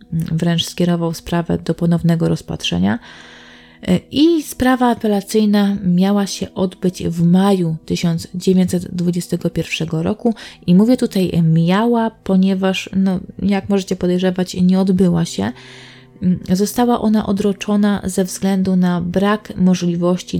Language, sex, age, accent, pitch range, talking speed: Polish, female, 20-39, native, 170-200 Hz, 105 wpm